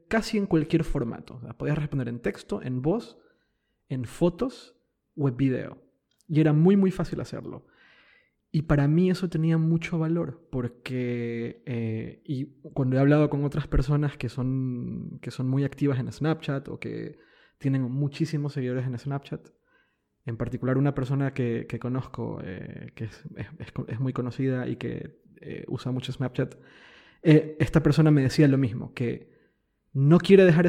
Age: 20-39